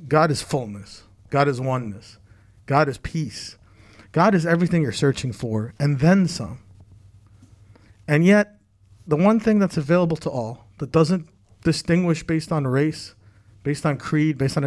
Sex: male